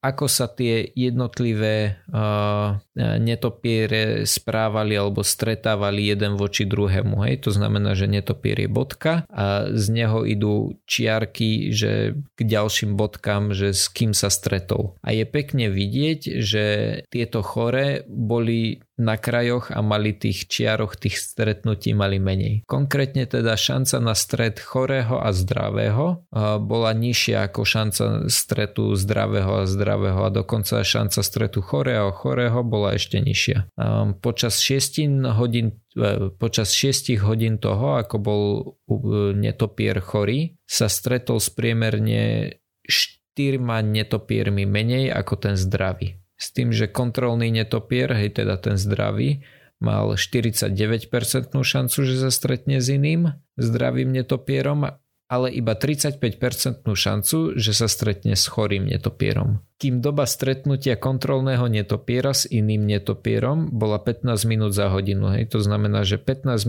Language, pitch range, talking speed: Slovak, 105-125 Hz, 130 wpm